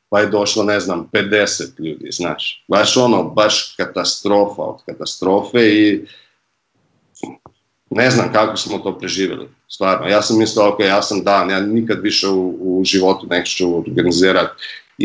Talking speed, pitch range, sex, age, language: 150 wpm, 100-130 Hz, male, 50-69, Croatian